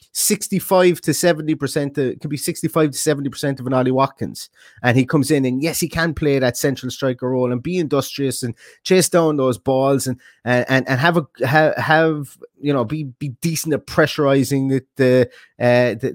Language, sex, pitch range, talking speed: English, male, 125-150 Hz, 195 wpm